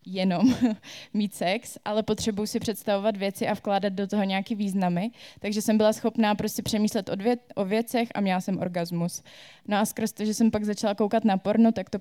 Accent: native